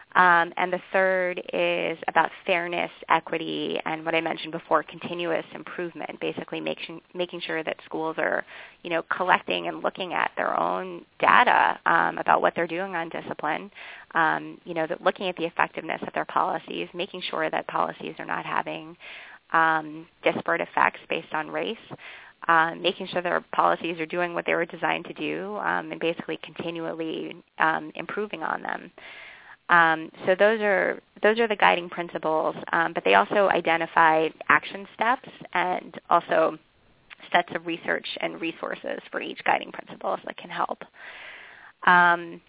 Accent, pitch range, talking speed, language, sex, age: American, 160-180 Hz, 160 wpm, English, female, 20-39